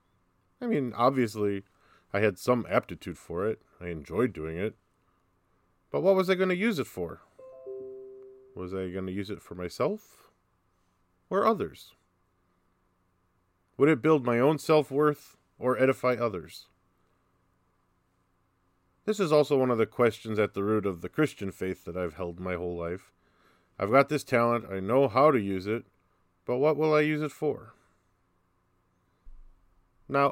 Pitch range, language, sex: 90-130 Hz, English, male